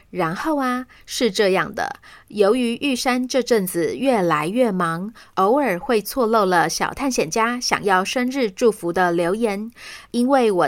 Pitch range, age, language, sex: 195-250 Hz, 30-49, Chinese, female